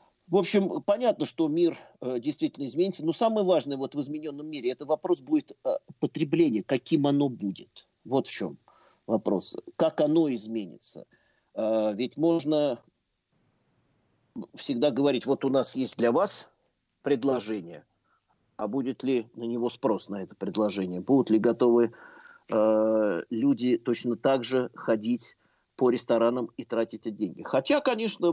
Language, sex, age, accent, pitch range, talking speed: Russian, male, 50-69, native, 110-155 Hz, 140 wpm